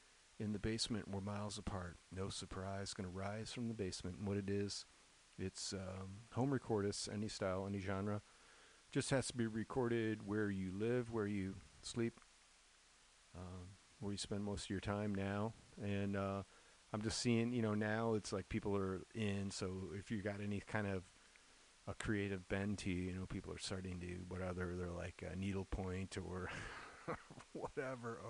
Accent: American